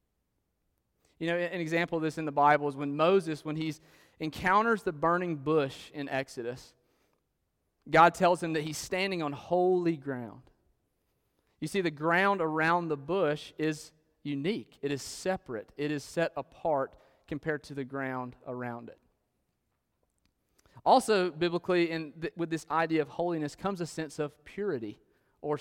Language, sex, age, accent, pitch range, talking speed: English, male, 30-49, American, 135-175 Hz, 150 wpm